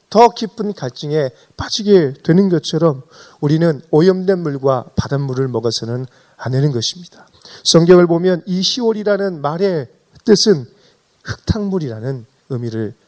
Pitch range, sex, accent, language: 130-200 Hz, male, native, Korean